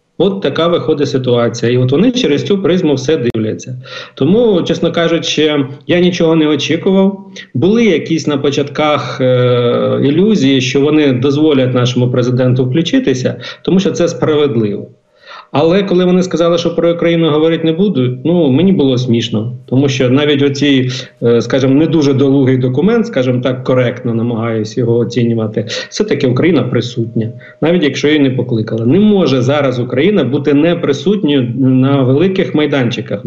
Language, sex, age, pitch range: Ukrainian, male, 50-69, 130-170 Hz